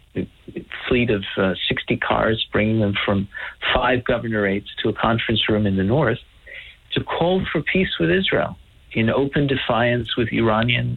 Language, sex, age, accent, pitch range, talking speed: English, male, 50-69, American, 105-130 Hz, 160 wpm